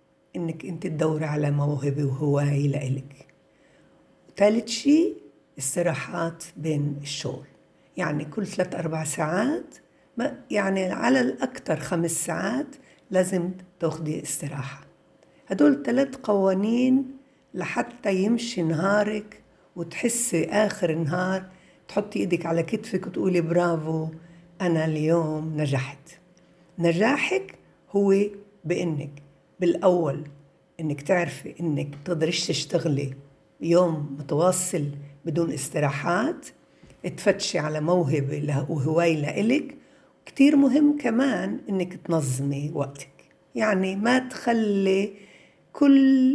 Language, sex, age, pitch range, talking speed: Arabic, female, 60-79, 155-220 Hz, 90 wpm